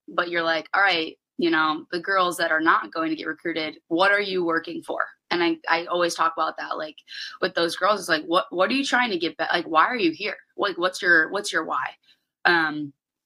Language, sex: English, female